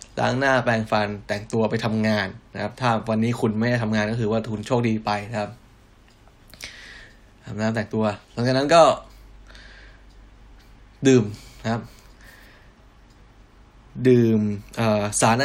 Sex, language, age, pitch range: male, Thai, 10-29, 105-125 Hz